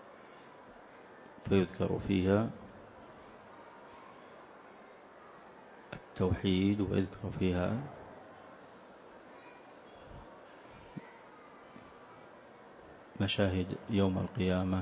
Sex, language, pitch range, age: male, Arabic, 95-105 Hz, 30-49